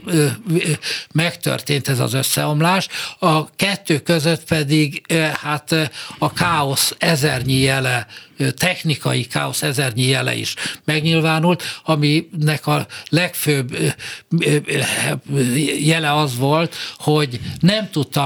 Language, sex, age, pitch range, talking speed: Hungarian, male, 60-79, 135-160 Hz, 90 wpm